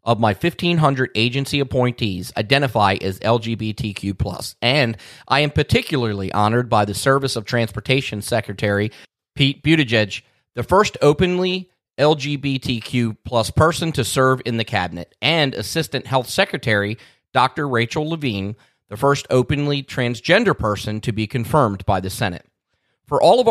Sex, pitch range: male, 110-140 Hz